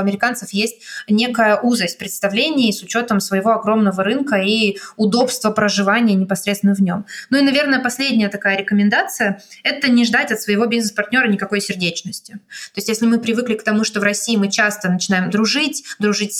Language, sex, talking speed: Russian, female, 170 wpm